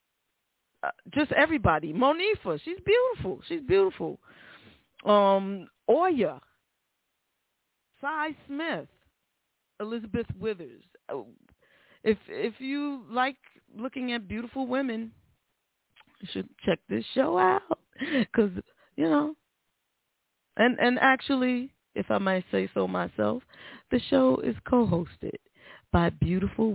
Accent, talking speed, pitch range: American, 100 wpm, 185-275 Hz